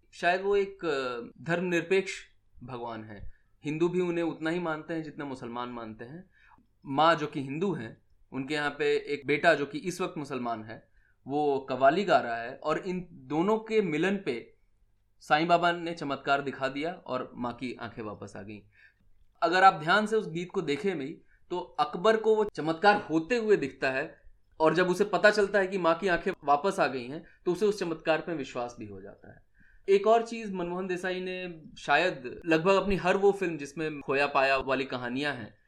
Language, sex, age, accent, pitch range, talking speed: Hindi, male, 20-39, native, 130-185 Hz, 195 wpm